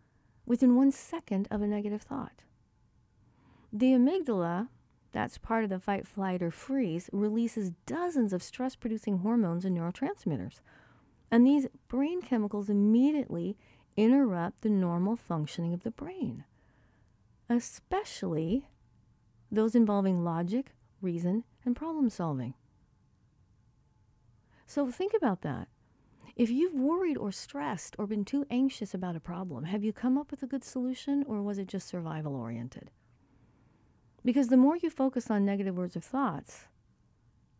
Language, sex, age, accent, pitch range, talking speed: English, female, 40-59, American, 165-260 Hz, 135 wpm